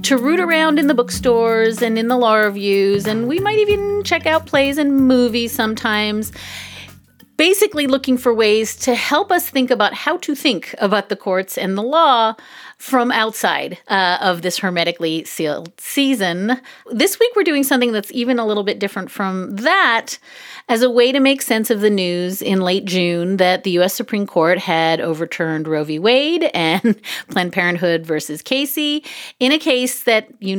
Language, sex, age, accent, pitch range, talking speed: English, female, 30-49, American, 180-260 Hz, 180 wpm